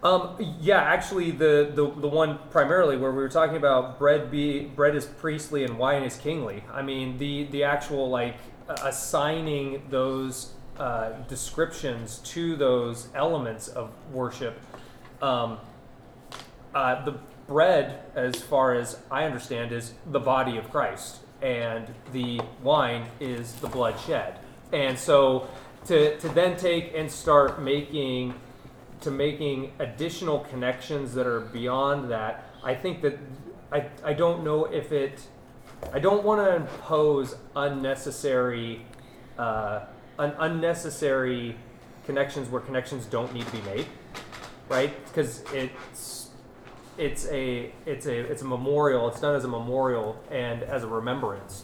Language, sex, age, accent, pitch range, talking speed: English, male, 30-49, American, 125-145 Hz, 140 wpm